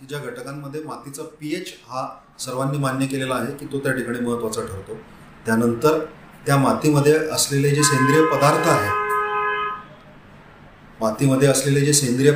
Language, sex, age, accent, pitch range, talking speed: Hindi, male, 40-59, native, 130-155 Hz, 85 wpm